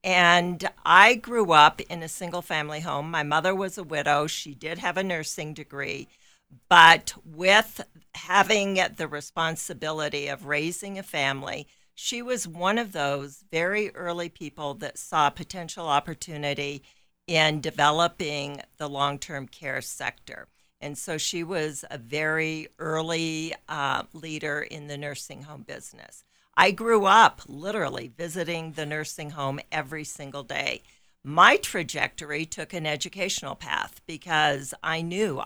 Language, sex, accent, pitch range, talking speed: English, female, American, 145-180 Hz, 135 wpm